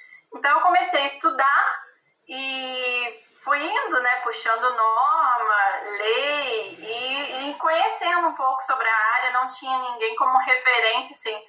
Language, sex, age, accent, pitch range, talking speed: Portuguese, female, 20-39, Brazilian, 230-320 Hz, 135 wpm